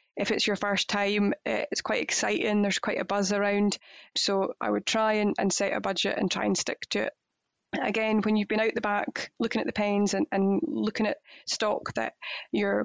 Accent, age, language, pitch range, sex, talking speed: British, 20-39, English, 200-220 Hz, female, 215 wpm